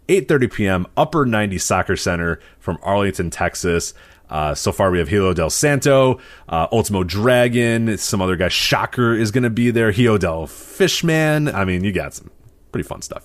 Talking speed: 175 wpm